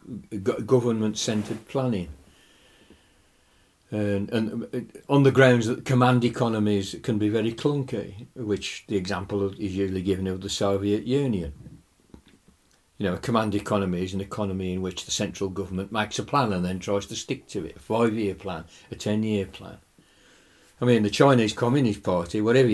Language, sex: English, male